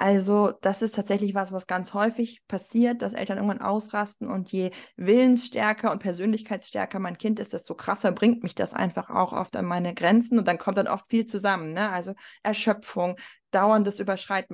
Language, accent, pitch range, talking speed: German, German, 190-230 Hz, 180 wpm